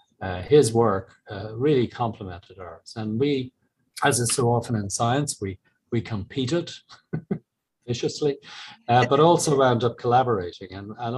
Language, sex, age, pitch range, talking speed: English, male, 40-59, 95-115 Hz, 145 wpm